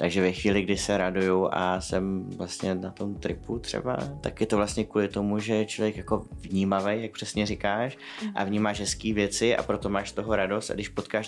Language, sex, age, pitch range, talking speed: Czech, male, 20-39, 95-105 Hz, 205 wpm